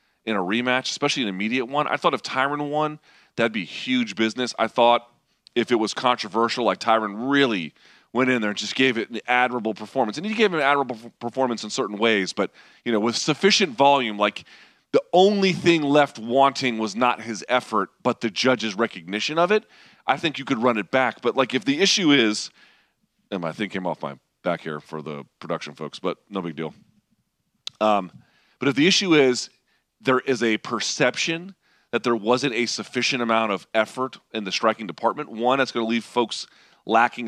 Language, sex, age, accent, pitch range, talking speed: English, male, 30-49, American, 110-140 Hz, 200 wpm